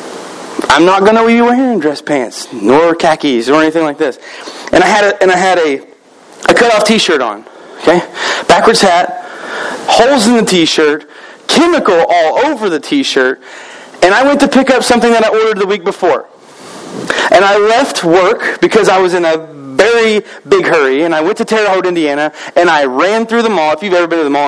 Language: English